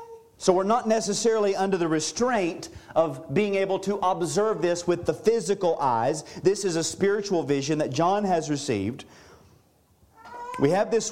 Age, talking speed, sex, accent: 40-59, 155 wpm, male, American